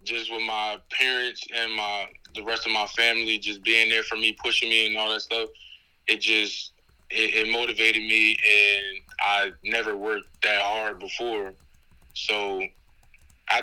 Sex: male